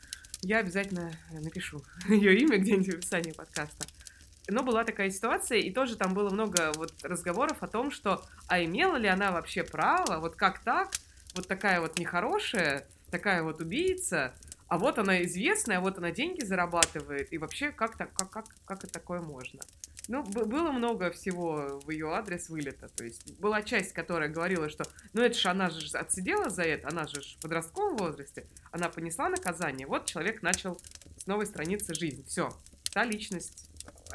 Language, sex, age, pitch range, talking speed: Russian, female, 20-39, 160-205 Hz, 165 wpm